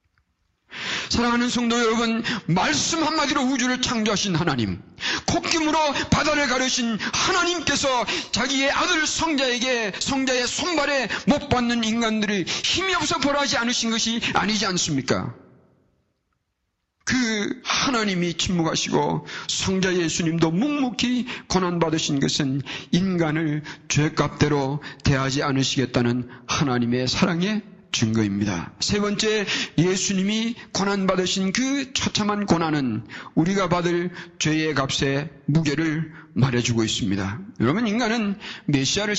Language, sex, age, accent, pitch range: Korean, male, 40-59, native, 150-235 Hz